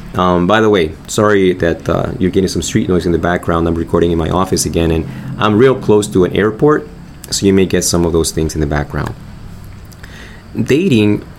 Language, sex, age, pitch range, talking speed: English, male, 20-39, 85-105 Hz, 210 wpm